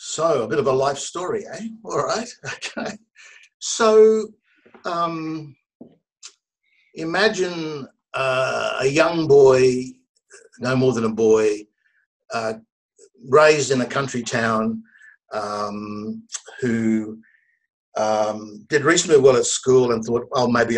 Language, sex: English, male